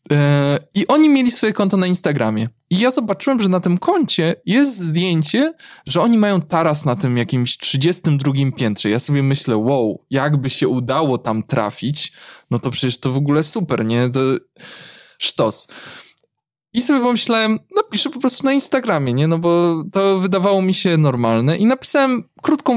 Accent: native